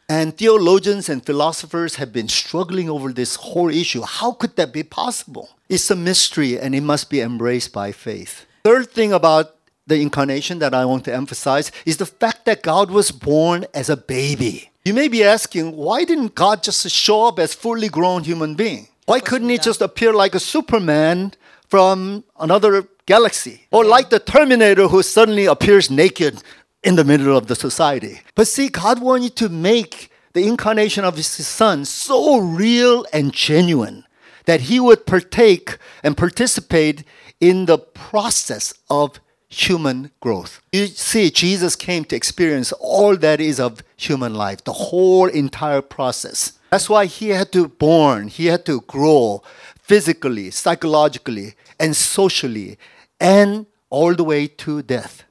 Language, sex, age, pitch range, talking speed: English, male, 50-69, 145-205 Hz, 165 wpm